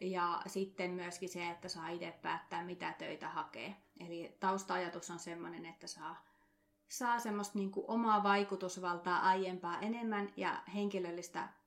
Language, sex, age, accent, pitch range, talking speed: Finnish, female, 30-49, native, 175-205 Hz, 135 wpm